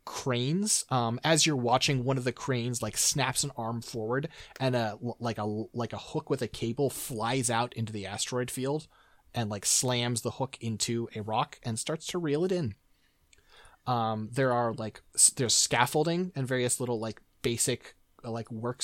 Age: 30-49